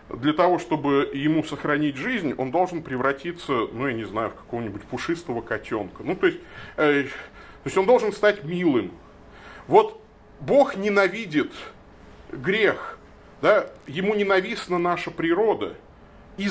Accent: native